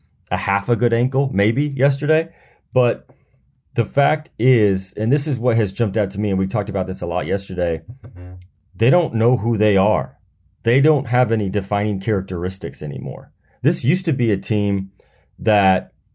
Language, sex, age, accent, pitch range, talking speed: English, male, 30-49, American, 95-125 Hz, 180 wpm